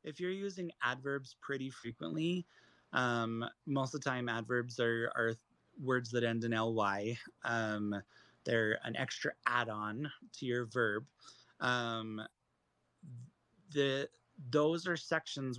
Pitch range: 115-135 Hz